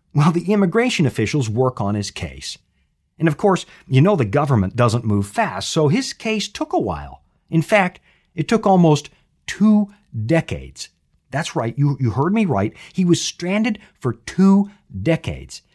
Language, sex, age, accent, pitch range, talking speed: English, male, 40-59, American, 120-200 Hz, 170 wpm